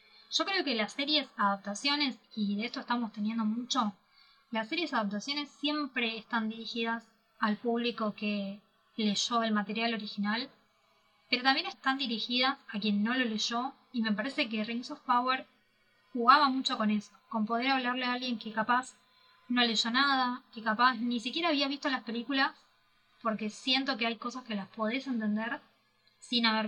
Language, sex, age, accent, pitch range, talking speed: Spanish, female, 20-39, Argentinian, 215-255 Hz, 165 wpm